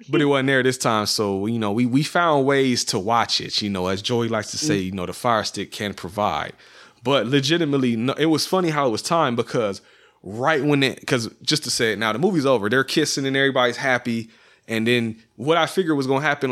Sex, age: male, 30-49